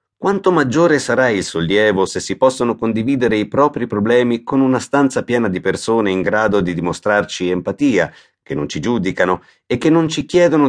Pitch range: 95-140 Hz